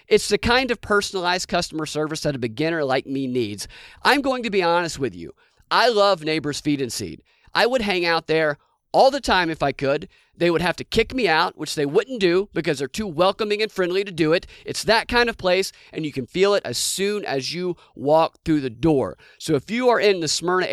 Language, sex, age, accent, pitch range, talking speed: English, male, 40-59, American, 145-185 Hz, 235 wpm